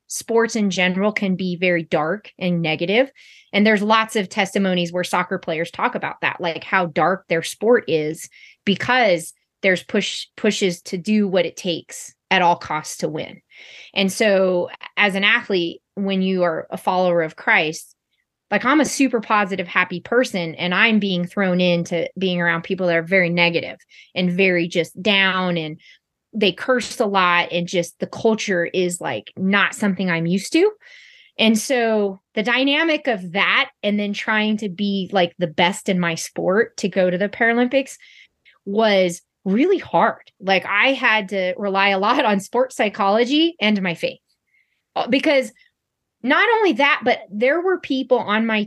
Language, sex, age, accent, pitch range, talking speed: English, female, 20-39, American, 180-230 Hz, 170 wpm